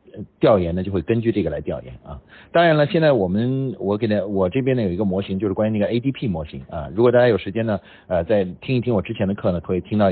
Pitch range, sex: 90-125 Hz, male